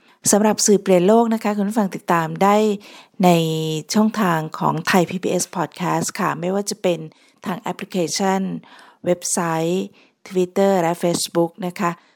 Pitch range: 165-200 Hz